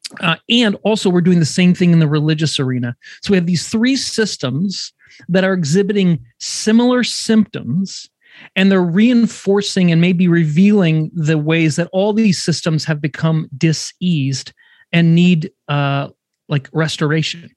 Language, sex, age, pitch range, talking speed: English, male, 30-49, 150-190 Hz, 145 wpm